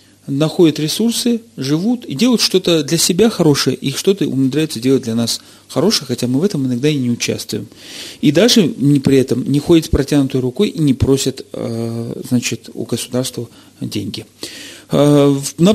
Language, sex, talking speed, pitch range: Russian, male, 160 wpm, 120-155 Hz